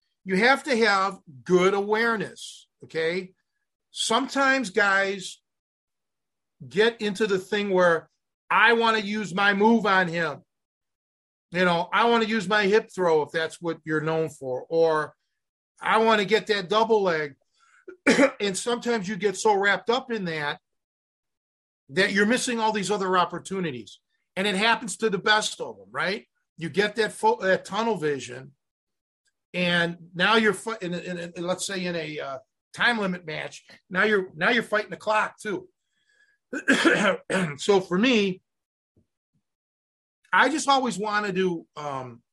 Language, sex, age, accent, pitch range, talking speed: English, male, 50-69, American, 165-220 Hz, 145 wpm